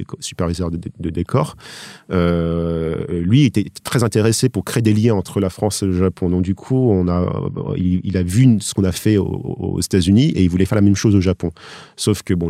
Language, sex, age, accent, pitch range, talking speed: French, male, 40-59, French, 85-105 Hz, 225 wpm